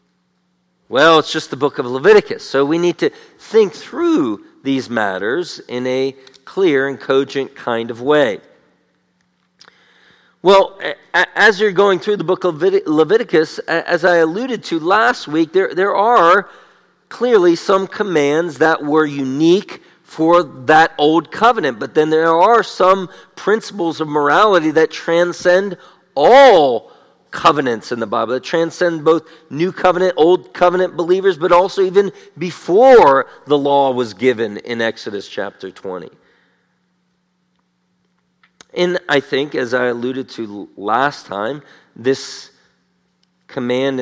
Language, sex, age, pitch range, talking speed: English, male, 50-69, 130-185 Hz, 130 wpm